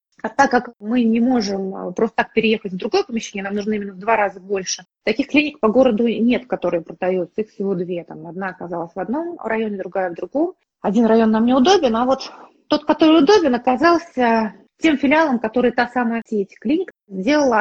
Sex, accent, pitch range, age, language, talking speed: female, native, 215-265 Hz, 30-49, Russian, 190 wpm